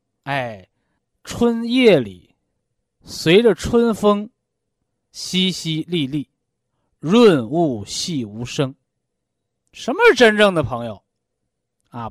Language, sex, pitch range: Chinese, male, 140-225 Hz